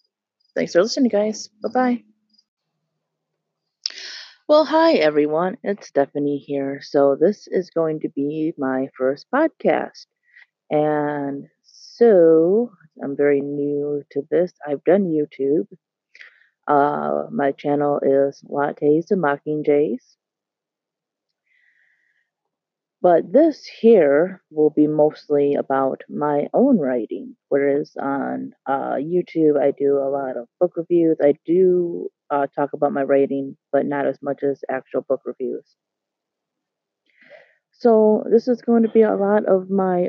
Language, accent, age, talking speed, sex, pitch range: English, American, 30-49, 125 wpm, female, 145-200 Hz